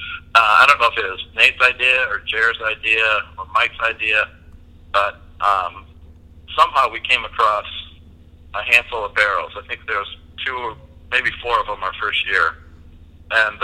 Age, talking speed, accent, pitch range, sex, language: 60-79, 170 wpm, American, 80-105 Hz, male, English